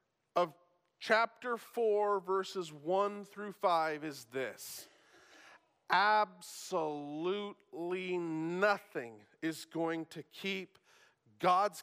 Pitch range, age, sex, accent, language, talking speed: 180-255 Hz, 40-59, male, American, English, 75 wpm